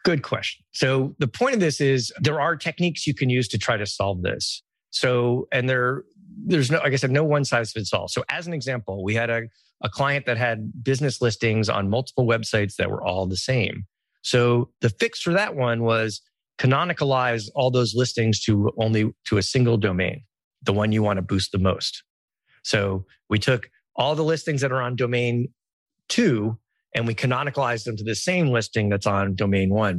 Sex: male